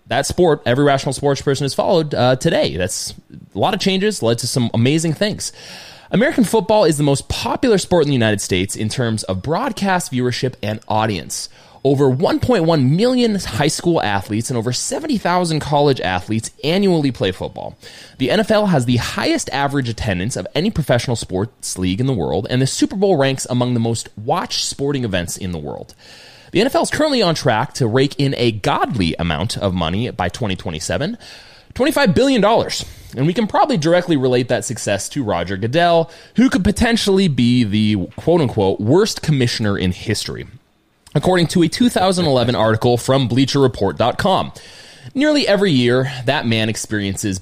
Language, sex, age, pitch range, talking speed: English, male, 20-39, 115-165 Hz, 165 wpm